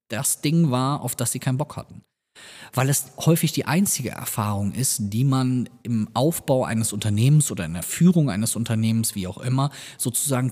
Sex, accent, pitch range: male, German, 110-140 Hz